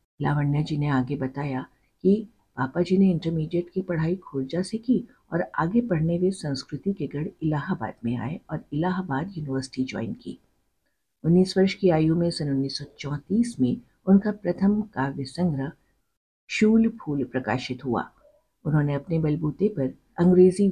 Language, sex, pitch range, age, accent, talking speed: Hindi, female, 140-190 Hz, 50-69, native, 150 wpm